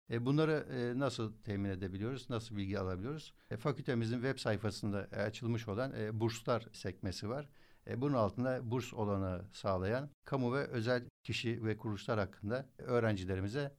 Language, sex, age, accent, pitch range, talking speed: Turkish, male, 60-79, native, 105-130 Hz, 120 wpm